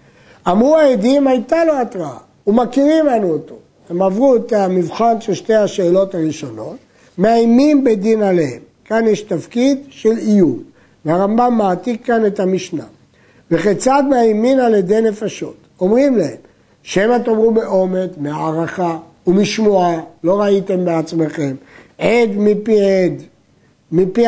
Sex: male